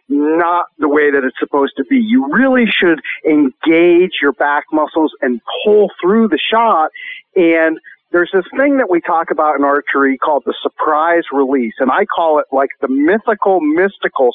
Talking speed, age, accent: 175 wpm, 50-69, American